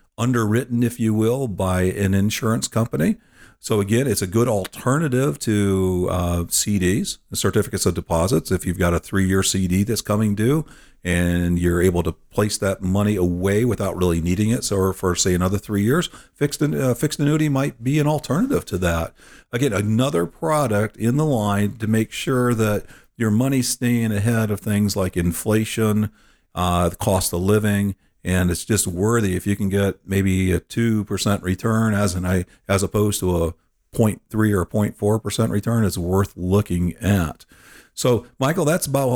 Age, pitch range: 50-69, 95-115 Hz